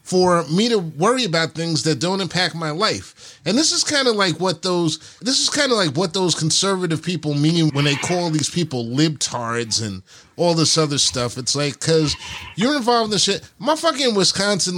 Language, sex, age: English, male, 30-49